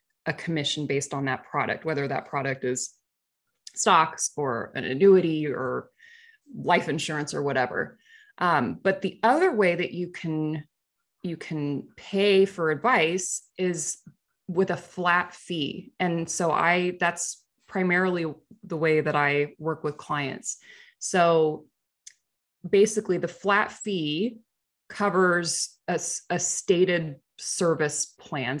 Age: 20-39